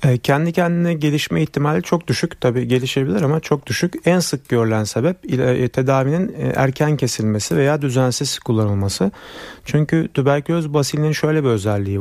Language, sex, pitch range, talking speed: Turkish, male, 115-150 Hz, 135 wpm